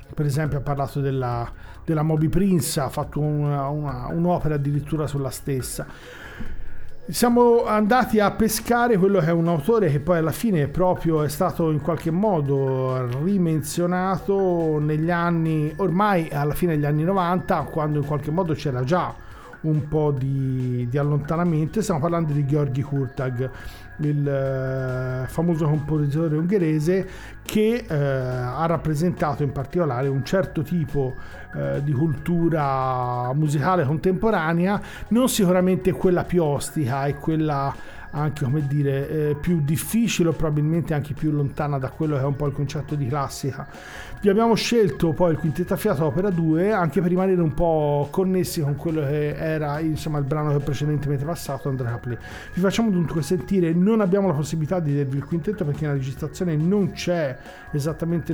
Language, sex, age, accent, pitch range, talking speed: Italian, male, 40-59, native, 145-180 Hz, 155 wpm